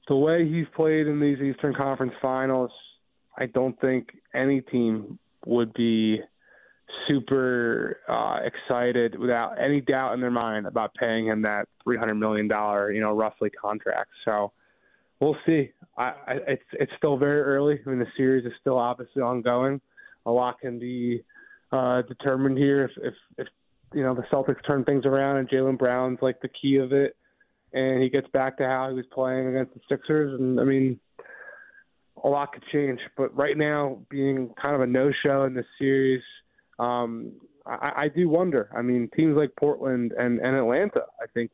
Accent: American